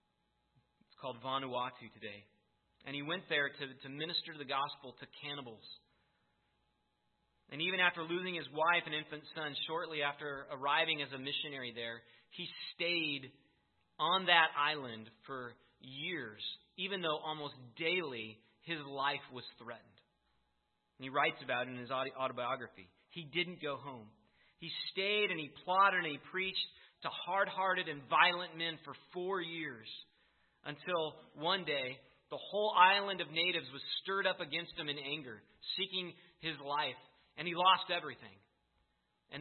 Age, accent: 30-49, American